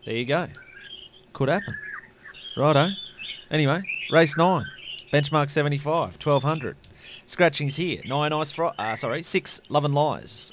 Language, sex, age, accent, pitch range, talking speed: German, male, 30-49, Australian, 110-150 Hz, 130 wpm